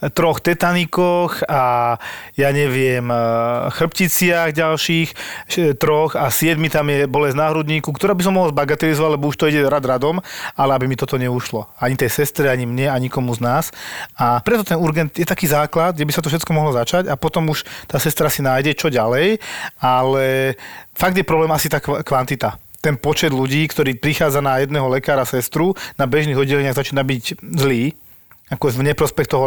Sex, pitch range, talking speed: male, 125-155 Hz, 185 wpm